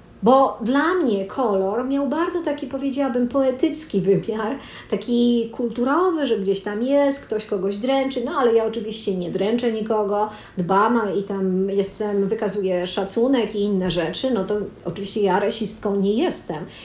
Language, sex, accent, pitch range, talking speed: Polish, female, native, 205-270 Hz, 145 wpm